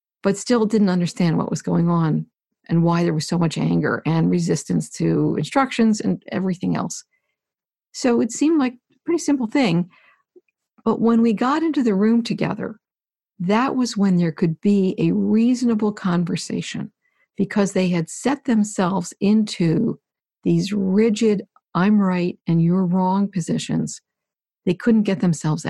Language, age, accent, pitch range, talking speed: English, 50-69, American, 180-235 Hz, 150 wpm